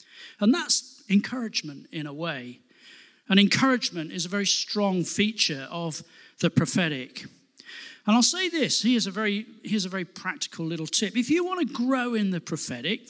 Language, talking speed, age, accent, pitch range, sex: English, 175 wpm, 40-59, British, 165-240 Hz, male